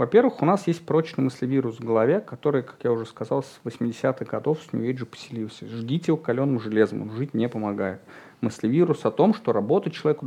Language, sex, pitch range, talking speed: Russian, male, 115-160 Hz, 195 wpm